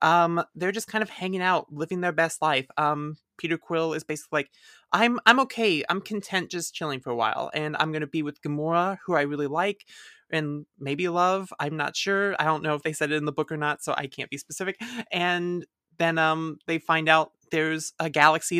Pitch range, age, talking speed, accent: 145-170 Hz, 20-39, 225 wpm, American